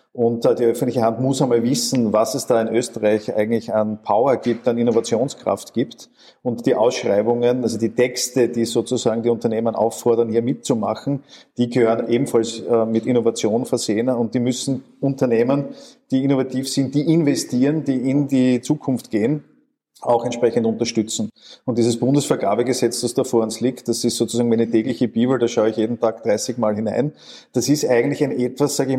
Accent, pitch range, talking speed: Austrian, 115-130 Hz, 175 wpm